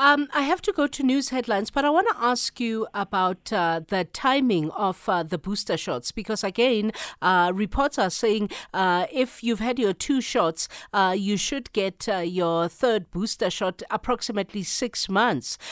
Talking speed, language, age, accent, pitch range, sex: 185 wpm, English, 50-69, South African, 170-230 Hz, female